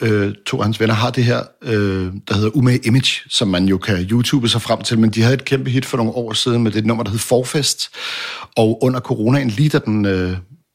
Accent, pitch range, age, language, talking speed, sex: Danish, 115-140 Hz, 60-79, English, 240 wpm, male